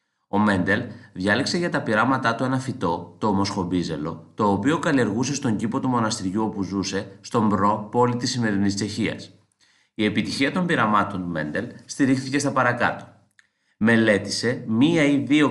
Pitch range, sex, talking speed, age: 105-135 Hz, male, 150 wpm, 30-49